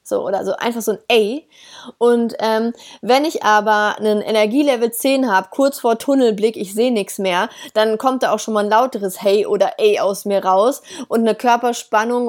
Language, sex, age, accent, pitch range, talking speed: German, female, 30-49, German, 210-270 Hz, 190 wpm